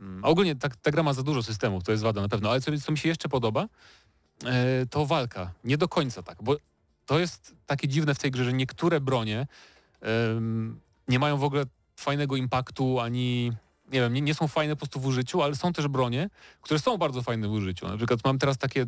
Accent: native